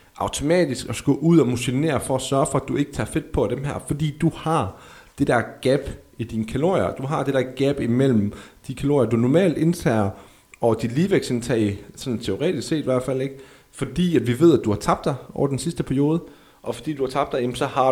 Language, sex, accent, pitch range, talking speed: Danish, male, native, 120-160 Hz, 230 wpm